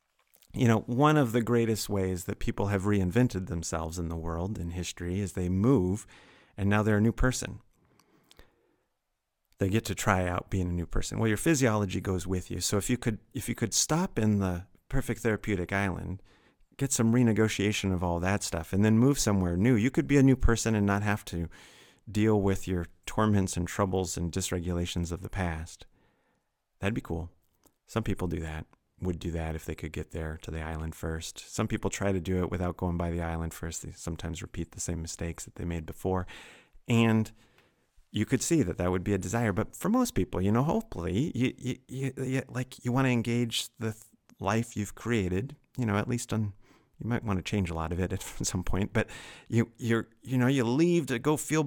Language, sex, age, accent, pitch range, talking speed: English, male, 30-49, American, 90-120 Hz, 215 wpm